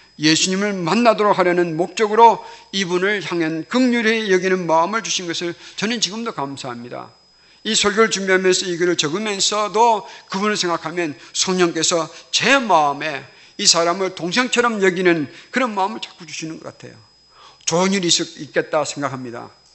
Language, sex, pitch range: Korean, male, 145-190 Hz